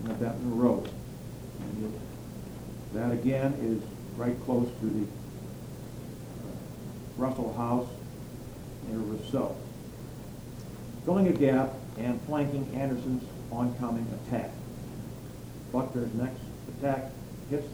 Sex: male